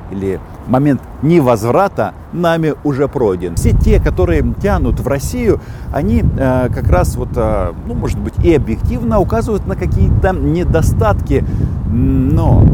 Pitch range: 95-125 Hz